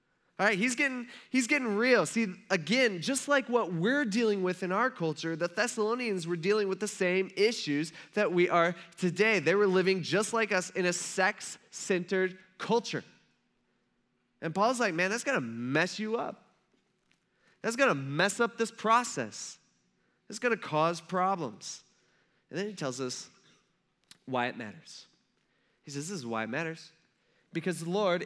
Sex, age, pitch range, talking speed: male, 20-39, 135-205 Hz, 170 wpm